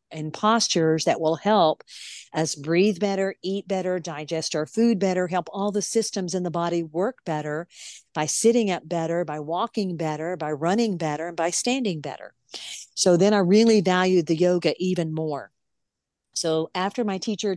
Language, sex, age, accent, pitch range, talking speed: English, female, 50-69, American, 160-185 Hz, 170 wpm